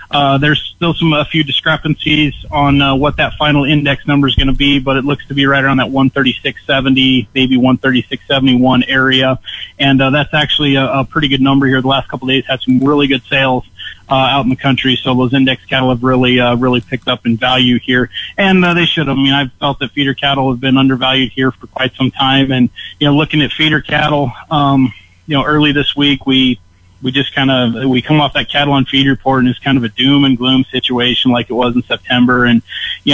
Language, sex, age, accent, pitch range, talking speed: English, male, 30-49, American, 130-140 Hz, 235 wpm